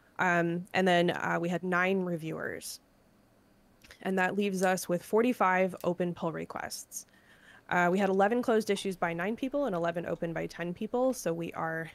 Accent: American